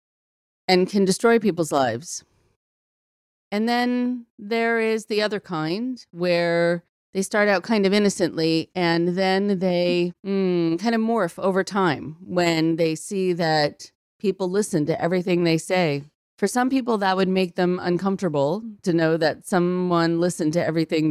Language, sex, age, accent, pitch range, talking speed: English, female, 40-59, American, 170-200 Hz, 150 wpm